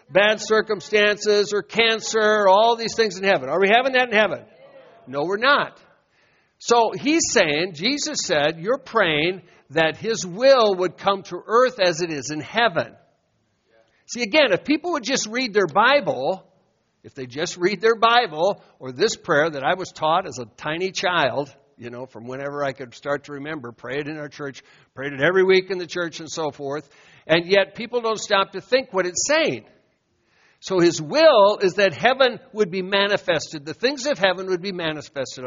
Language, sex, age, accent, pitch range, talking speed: English, male, 60-79, American, 160-225 Hz, 190 wpm